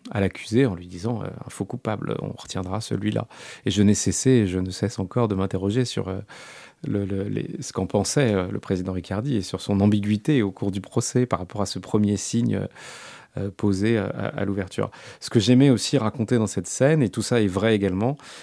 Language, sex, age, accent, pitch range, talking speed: French, male, 30-49, French, 95-120 Hz, 230 wpm